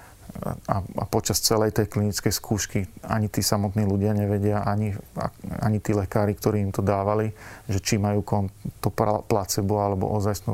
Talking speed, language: 150 wpm, Slovak